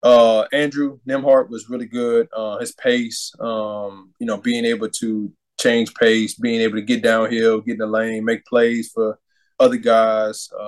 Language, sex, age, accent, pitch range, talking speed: English, male, 20-39, American, 110-145 Hz, 175 wpm